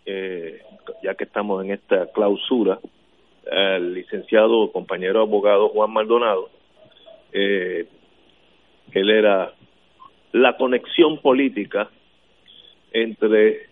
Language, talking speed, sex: Spanish, 90 wpm, male